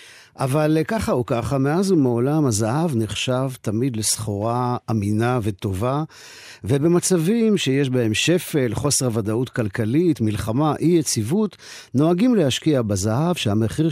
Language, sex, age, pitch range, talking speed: Hebrew, male, 50-69, 110-155 Hz, 110 wpm